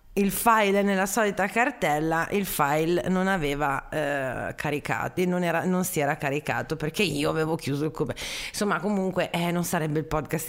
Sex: female